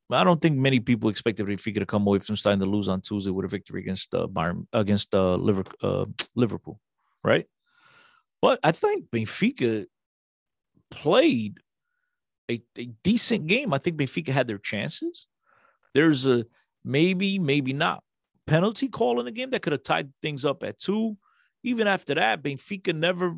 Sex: male